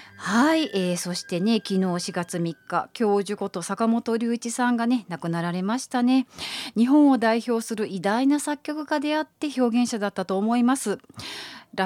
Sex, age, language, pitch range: female, 40-59, Japanese, 185-270 Hz